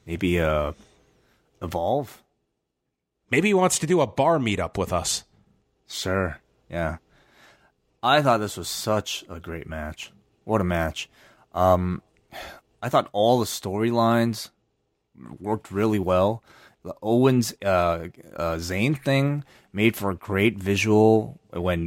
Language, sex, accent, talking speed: English, male, American, 130 wpm